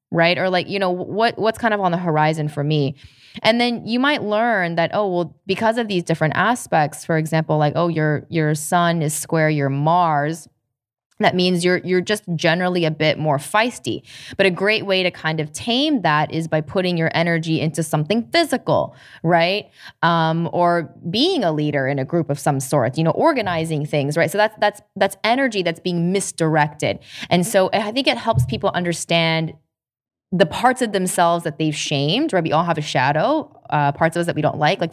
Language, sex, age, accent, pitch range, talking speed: English, female, 20-39, American, 150-190 Hz, 205 wpm